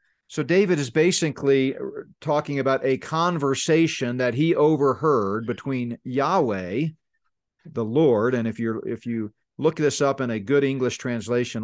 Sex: male